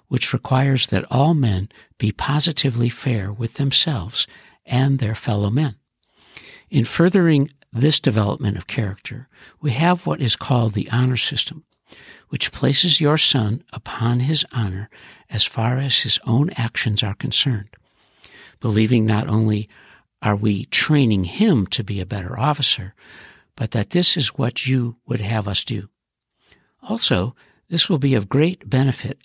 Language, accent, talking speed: English, American, 150 wpm